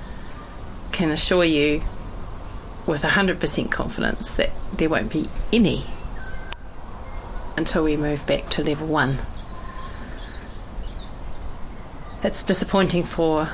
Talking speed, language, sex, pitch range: 95 wpm, English, female, 155-190 Hz